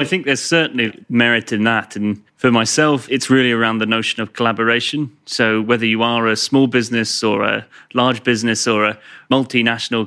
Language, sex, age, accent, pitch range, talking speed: English, male, 30-49, British, 110-125 Hz, 185 wpm